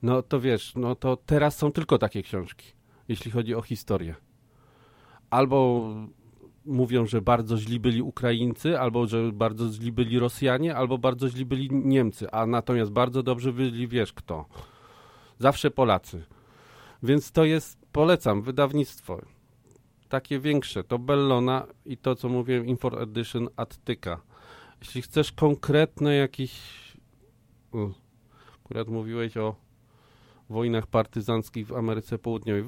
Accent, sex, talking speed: native, male, 125 wpm